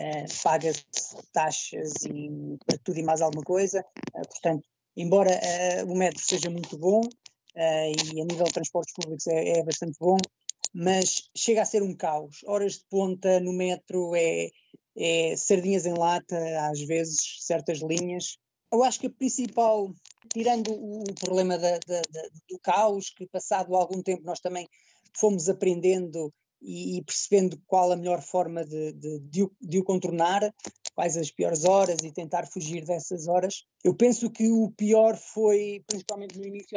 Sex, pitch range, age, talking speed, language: female, 165-195 Hz, 20-39, 155 wpm, Portuguese